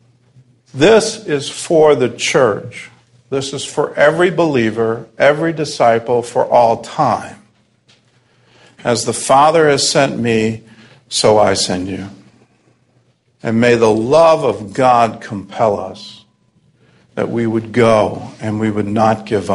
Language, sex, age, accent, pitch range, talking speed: English, male, 50-69, American, 110-125 Hz, 130 wpm